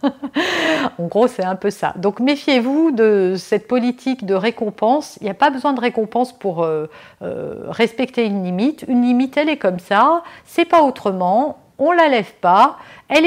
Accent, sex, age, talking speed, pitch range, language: French, female, 50-69, 185 wpm, 200-280 Hz, French